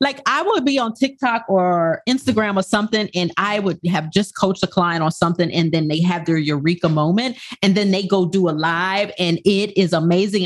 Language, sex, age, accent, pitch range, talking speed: English, female, 30-49, American, 170-225 Hz, 220 wpm